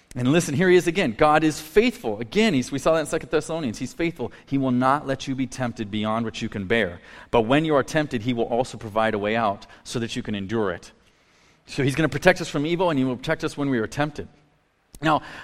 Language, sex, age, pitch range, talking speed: English, male, 30-49, 115-155 Hz, 255 wpm